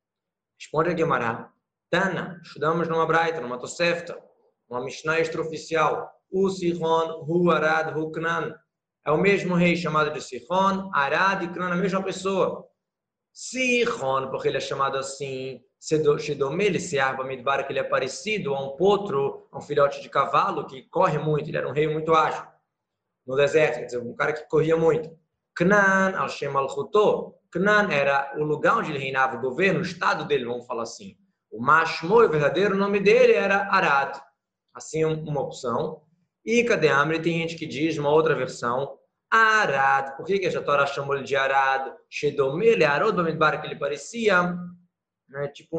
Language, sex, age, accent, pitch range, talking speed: Portuguese, male, 20-39, Brazilian, 140-185 Hz, 150 wpm